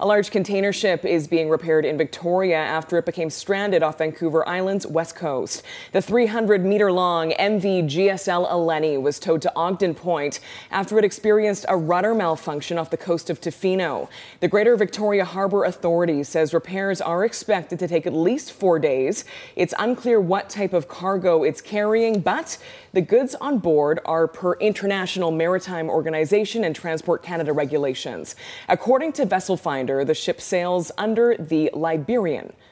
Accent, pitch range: American, 160-205 Hz